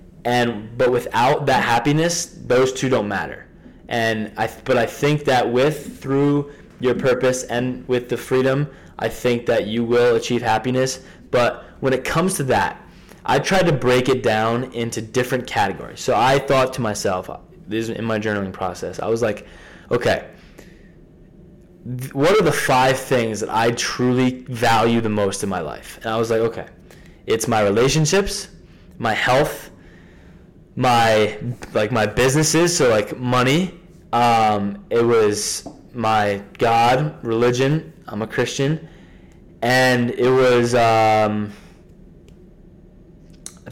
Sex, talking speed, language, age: male, 145 wpm, English, 20-39